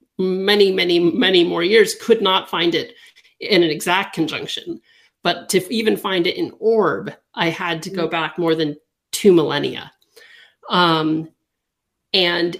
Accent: American